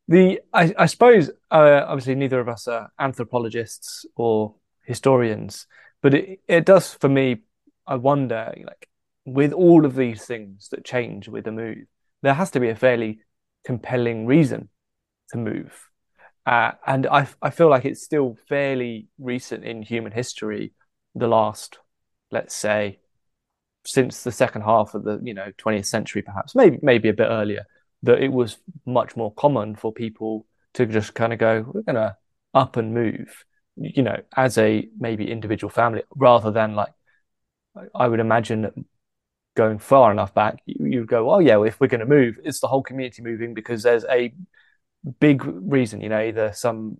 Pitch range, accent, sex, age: 110-135 Hz, British, male, 20-39